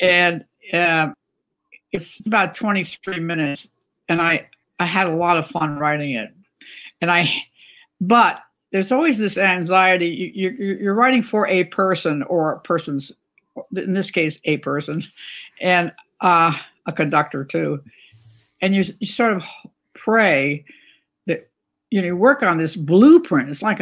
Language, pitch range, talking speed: English, 160-200 Hz, 145 wpm